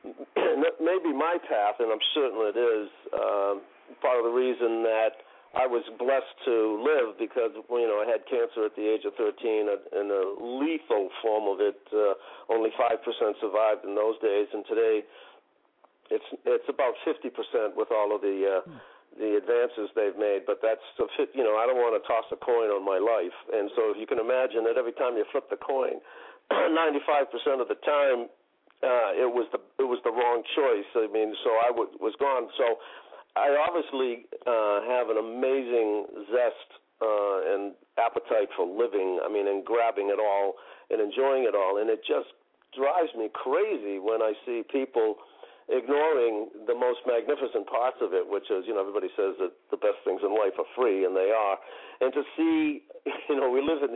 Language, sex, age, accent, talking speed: English, male, 50-69, American, 190 wpm